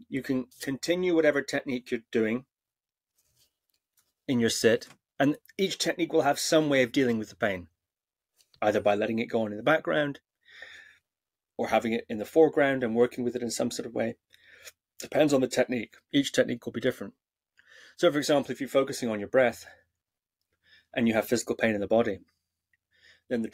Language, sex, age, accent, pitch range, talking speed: English, male, 30-49, British, 115-145 Hz, 190 wpm